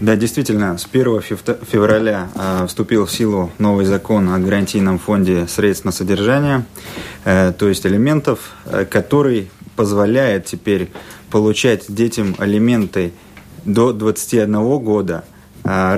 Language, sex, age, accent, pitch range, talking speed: Russian, male, 30-49, native, 100-120 Hz, 125 wpm